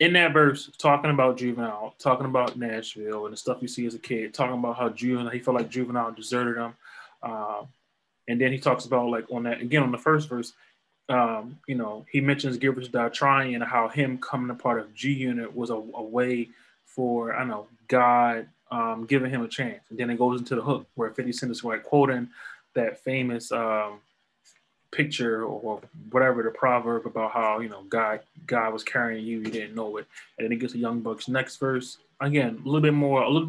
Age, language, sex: 20-39, English, male